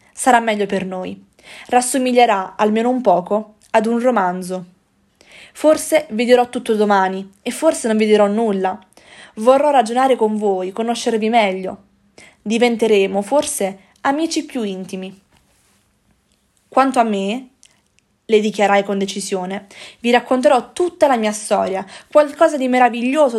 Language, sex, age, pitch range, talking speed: Italian, female, 20-39, 205-265 Hz, 125 wpm